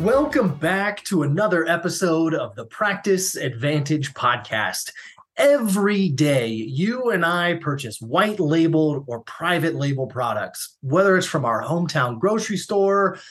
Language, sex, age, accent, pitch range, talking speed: English, male, 20-39, American, 135-195 Hz, 125 wpm